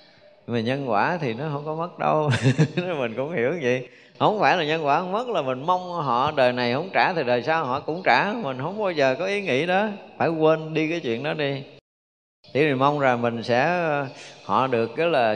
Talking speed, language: 235 wpm, Vietnamese